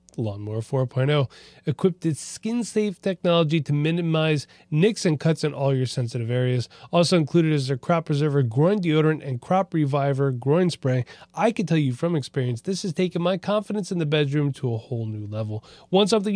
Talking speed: 185 wpm